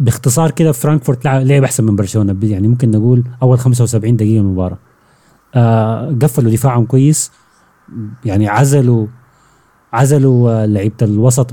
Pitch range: 105-135 Hz